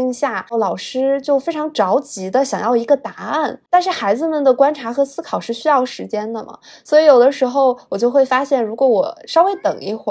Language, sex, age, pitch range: Chinese, female, 20-39, 190-255 Hz